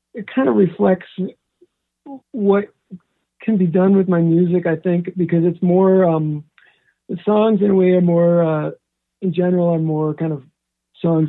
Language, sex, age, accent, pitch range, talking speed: English, male, 50-69, American, 155-195 Hz, 170 wpm